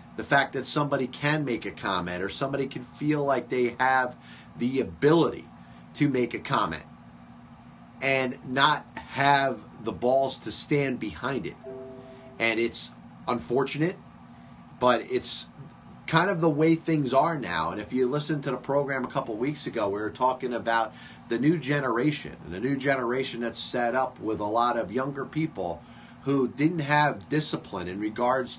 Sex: male